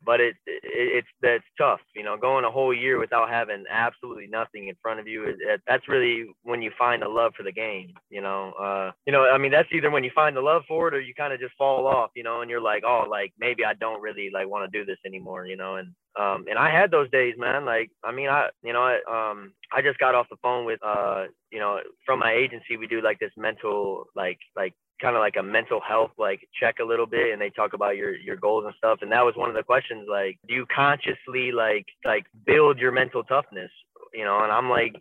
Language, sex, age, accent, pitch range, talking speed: English, male, 20-39, American, 110-165 Hz, 260 wpm